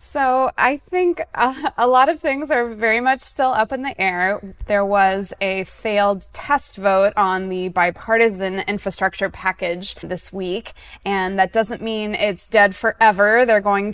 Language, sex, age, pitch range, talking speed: English, female, 20-39, 195-225 Hz, 160 wpm